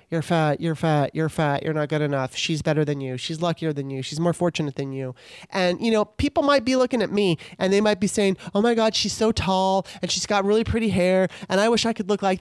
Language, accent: English, American